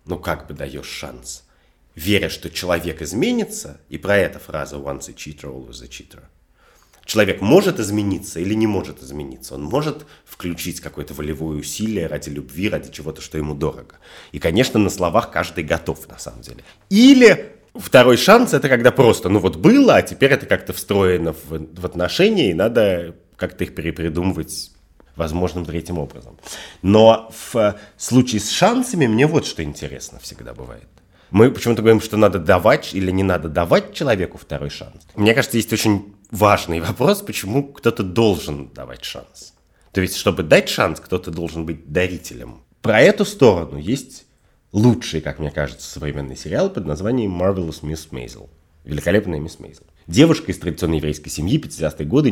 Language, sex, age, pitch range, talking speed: Russian, male, 30-49, 75-105 Hz, 165 wpm